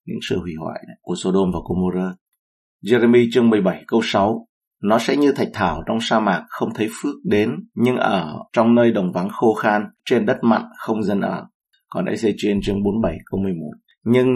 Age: 20-39